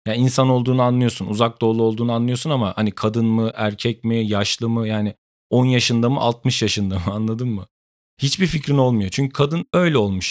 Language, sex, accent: Turkish, male, native